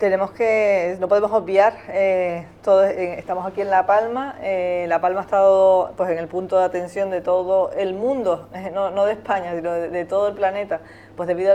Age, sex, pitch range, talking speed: 20-39, female, 180-205 Hz, 195 wpm